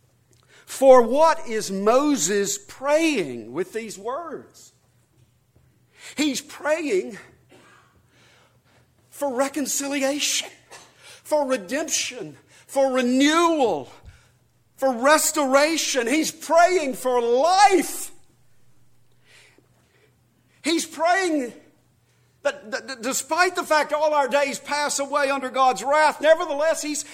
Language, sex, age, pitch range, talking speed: English, male, 50-69, 235-300 Hz, 85 wpm